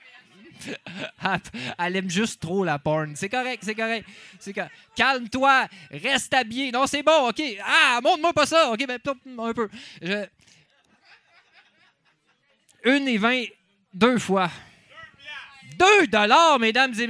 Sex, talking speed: male, 125 wpm